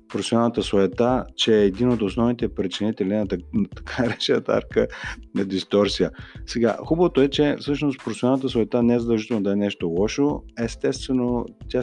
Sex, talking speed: male, 155 wpm